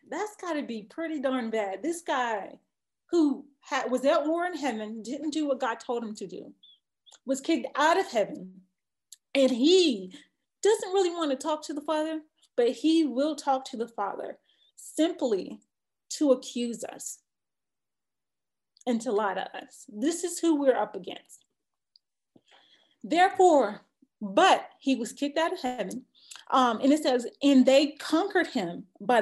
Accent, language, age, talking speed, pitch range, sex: American, English, 30-49, 155 wpm, 230-305 Hz, female